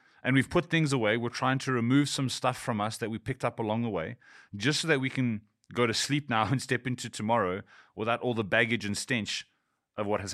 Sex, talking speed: male, 245 wpm